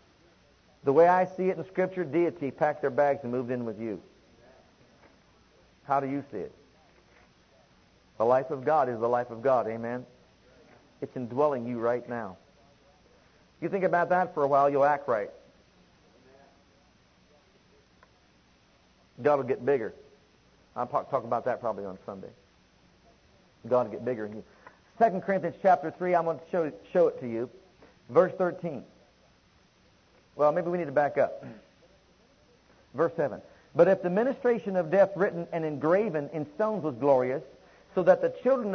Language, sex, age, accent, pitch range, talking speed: English, male, 40-59, American, 140-190 Hz, 160 wpm